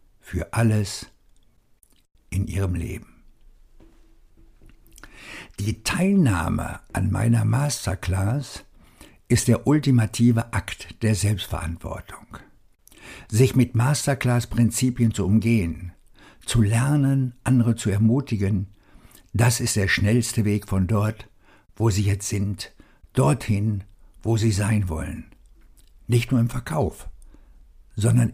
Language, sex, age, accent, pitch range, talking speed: German, male, 60-79, German, 95-120 Hz, 100 wpm